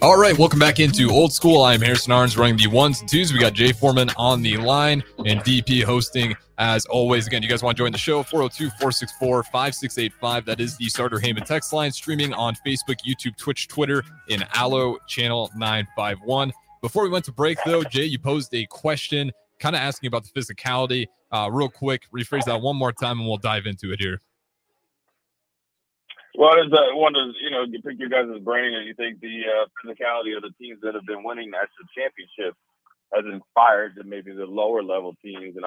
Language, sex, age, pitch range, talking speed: English, male, 20-39, 105-135 Hz, 195 wpm